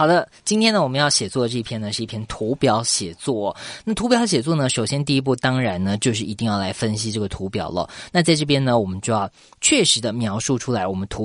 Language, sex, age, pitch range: Chinese, female, 20-39, 105-145 Hz